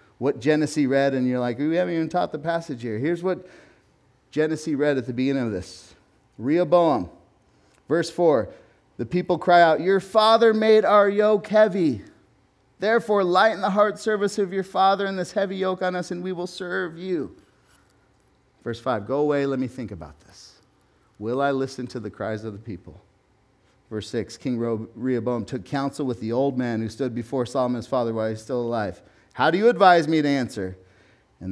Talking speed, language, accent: 190 wpm, English, American